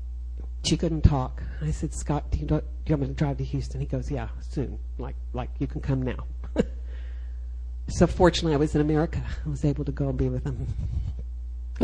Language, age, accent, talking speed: English, 60-79, American, 220 wpm